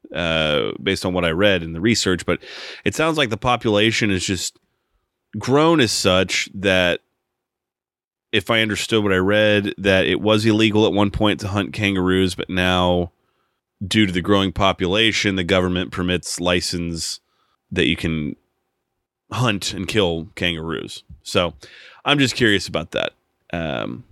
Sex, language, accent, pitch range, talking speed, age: male, English, American, 90-110 Hz, 155 wpm, 30-49